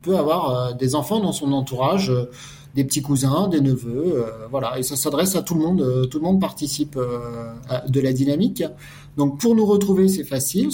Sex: male